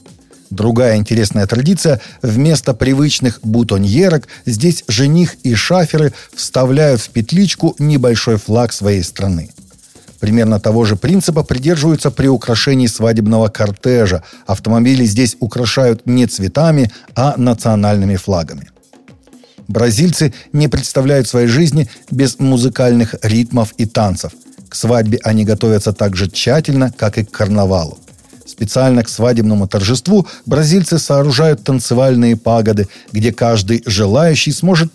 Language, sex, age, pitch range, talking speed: Russian, male, 40-59, 110-150 Hz, 115 wpm